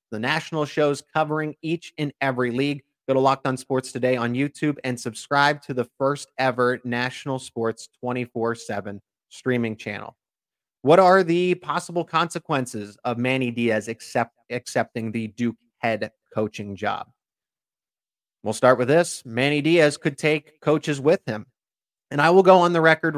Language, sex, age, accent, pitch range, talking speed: English, male, 30-49, American, 125-155 Hz, 155 wpm